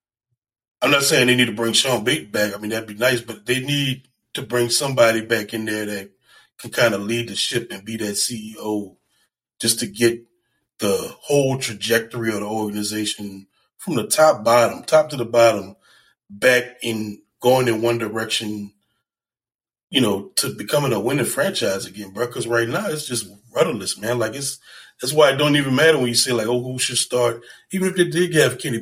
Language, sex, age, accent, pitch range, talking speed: English, male, 20-39, American, 115-140 Hz, 200 wpm